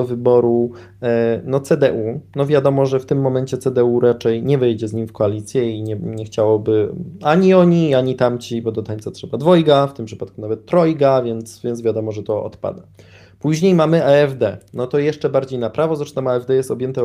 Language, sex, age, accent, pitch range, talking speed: Polish, male, 20-39, native, 115-145 Hz, 190 wpm